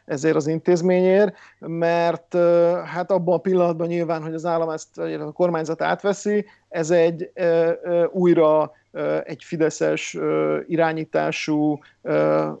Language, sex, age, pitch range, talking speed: Hungarian, male, 50-69, 135-180 Hz, 105 wpm